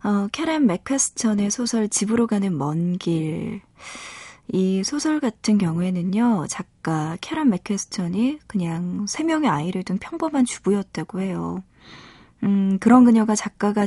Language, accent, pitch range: Korean, native, 175-240 Hz